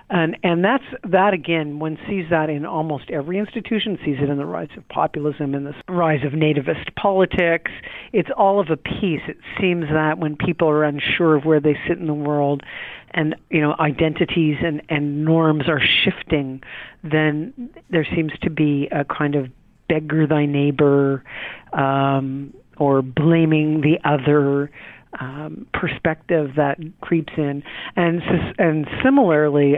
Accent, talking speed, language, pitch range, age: American, 155 wpm, English, 145-165 Hz, 40-59